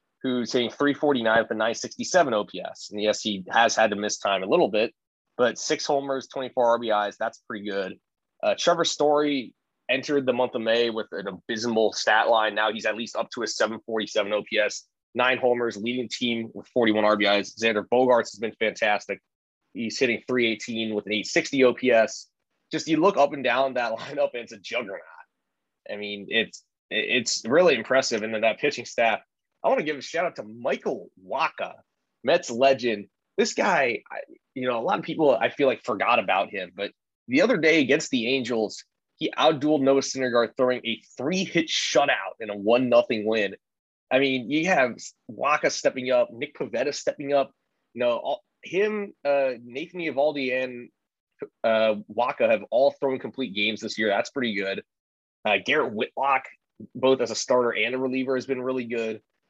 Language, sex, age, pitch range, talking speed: English, male, 20-39, 110-135 Hz, 185 wpm